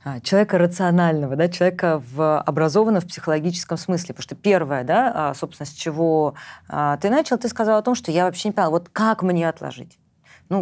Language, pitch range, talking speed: Russian, 155-200 Hz, 180 wpm